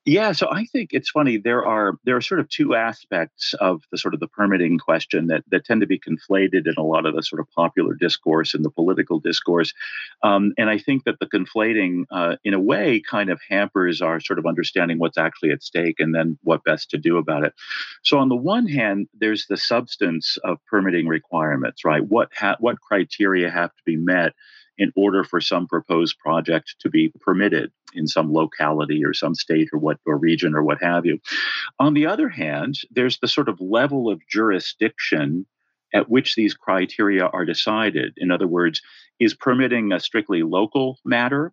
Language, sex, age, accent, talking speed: English, male, 50-69, American, 200 wpm